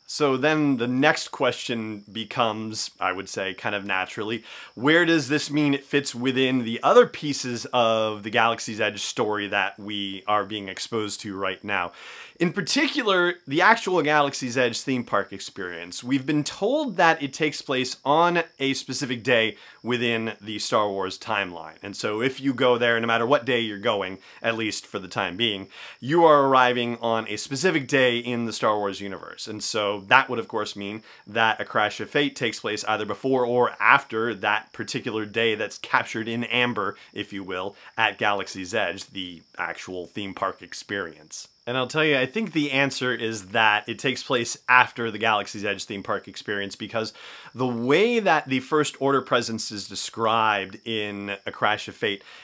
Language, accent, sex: English, American, male